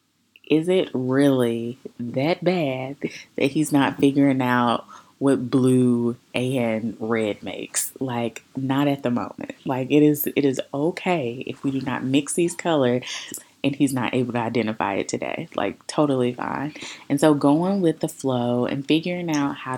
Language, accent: English, American